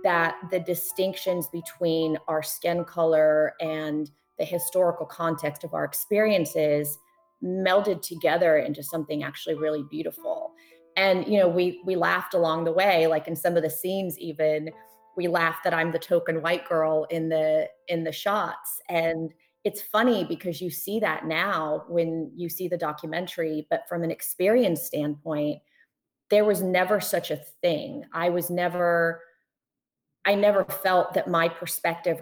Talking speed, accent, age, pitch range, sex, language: 155 wpm, American, 30-49, 160-180 Hz, female, English